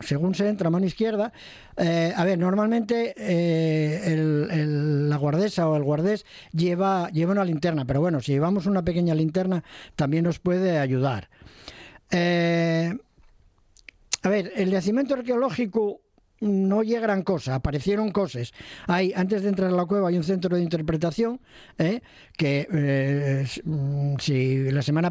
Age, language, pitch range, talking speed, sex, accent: 50-69, Spanish, 145-195 Hz, 140 wpm, male, Spanish